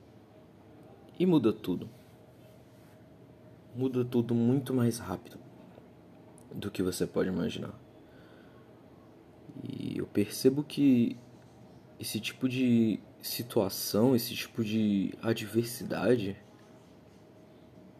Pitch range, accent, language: 100-120 Hz, Brazilian, Portuguese